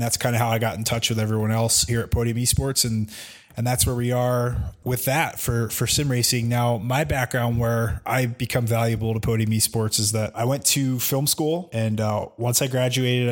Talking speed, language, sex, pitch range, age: 220 wpm, English, male, 110-125 Hz, 20-39